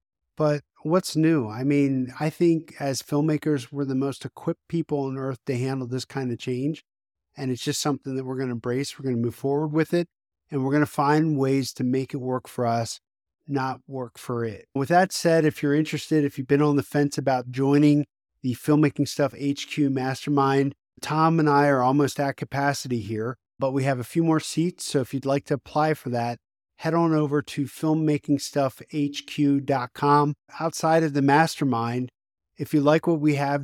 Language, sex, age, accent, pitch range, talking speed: English, male, 50-69, American, 130-150 Hz, 200 wpm